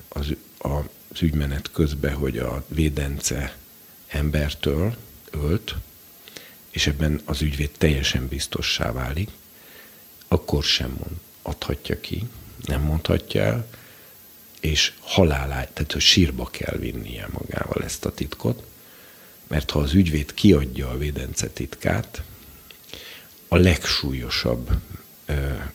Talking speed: 105 wpm